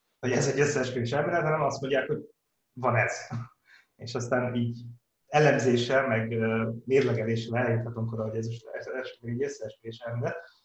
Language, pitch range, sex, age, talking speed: Hungarian, 115-135 Hz, male, 30-49, 150 wpm